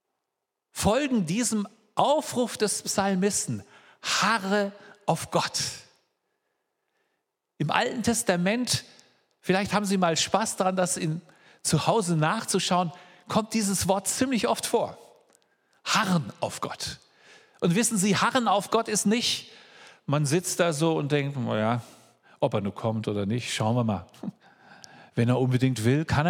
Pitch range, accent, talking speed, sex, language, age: 160-235 Hz, German, 130 wpm, male, German, 50-69